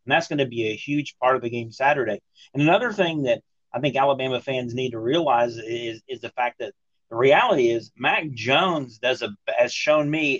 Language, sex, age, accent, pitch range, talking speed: English, male, 40-59, American, 125-170 Hz, 220 wpm